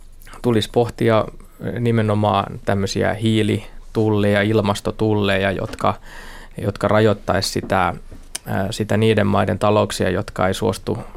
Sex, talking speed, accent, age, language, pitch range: male, 90 wpm, native, 20-39, Finnish, 100-115 Hz